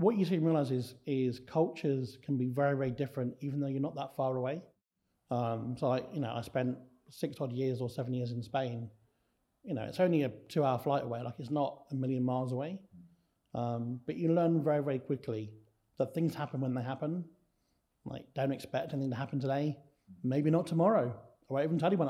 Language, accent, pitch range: English, British, 120-150 Hz